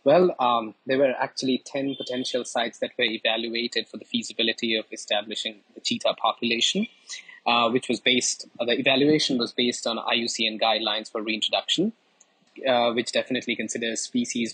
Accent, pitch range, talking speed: Indian, 120-150 Hz, 155 wpm